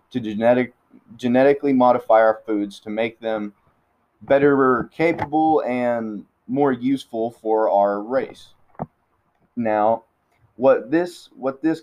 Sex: male